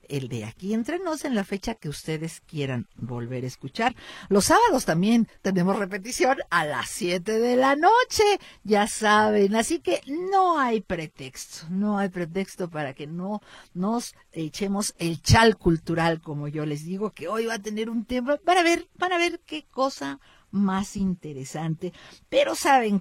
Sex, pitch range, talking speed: female, 165-235 Hz, 165 wpm